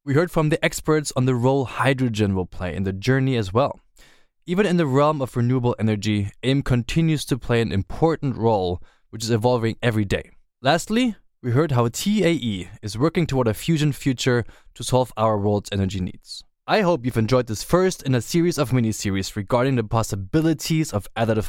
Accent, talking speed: German, 190 wpm